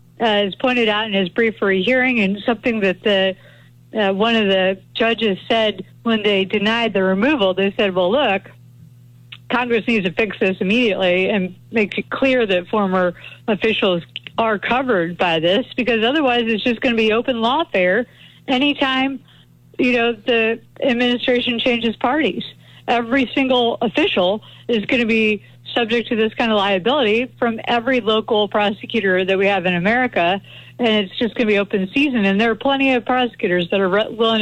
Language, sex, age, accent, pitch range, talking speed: English, female, 50-69, American, 190-240 Hz, 165 wpm